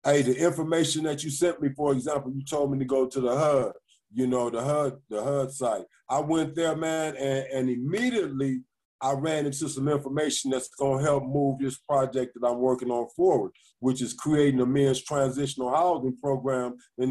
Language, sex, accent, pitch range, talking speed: English, male, American, 130-165 Hz, 200 wpm